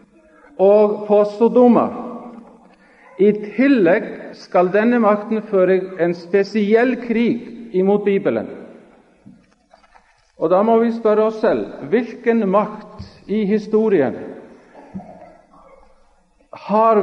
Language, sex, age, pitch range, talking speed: Danish, male, 50-69, 190-230 Hz, 90 wpm